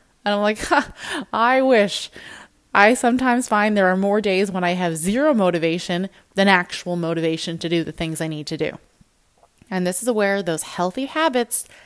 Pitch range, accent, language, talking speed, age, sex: 180-230 Hz, American, English, 175 wpm, 20-39, female